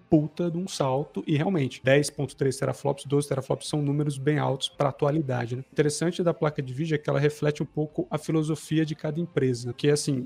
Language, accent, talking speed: Portuguese, Brazilian, 220 wpm